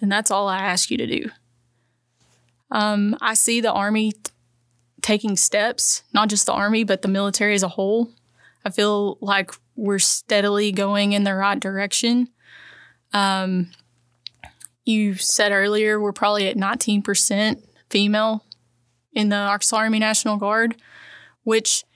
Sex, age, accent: female, 20-39, American